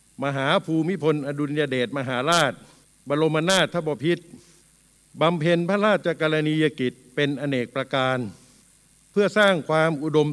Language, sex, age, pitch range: Thai, male, 60-79, 135-170 Hz